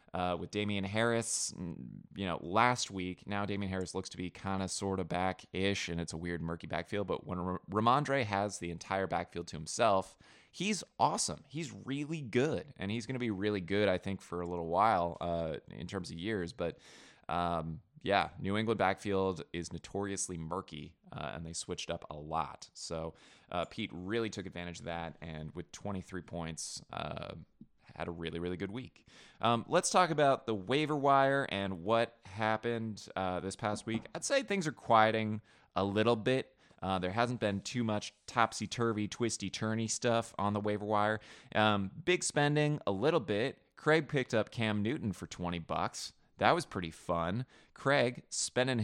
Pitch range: 90-115 Hz